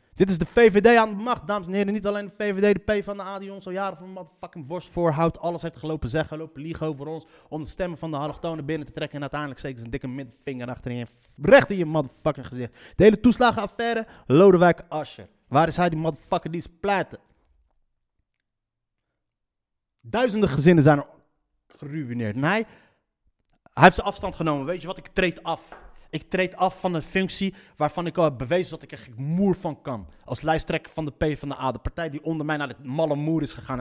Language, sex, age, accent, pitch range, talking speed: Dutch, male, 30-49, Dutch, 145-210 Hz, 220 wpm